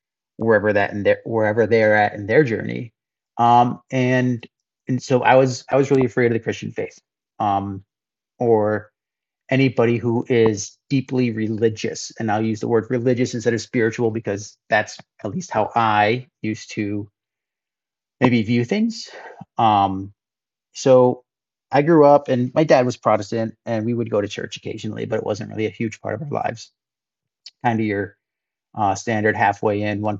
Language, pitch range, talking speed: English, 105-125 Hz, 170 wpm